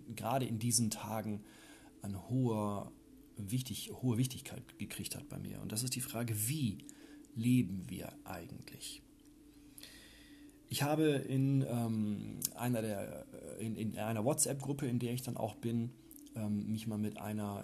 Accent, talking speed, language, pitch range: German, 130 wpm, German, 110-135 Hz